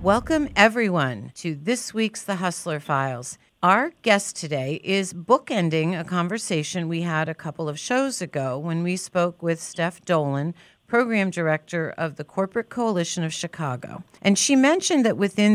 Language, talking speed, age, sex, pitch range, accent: English, 160 wpm, 50-69, female, 155-195 Hz, American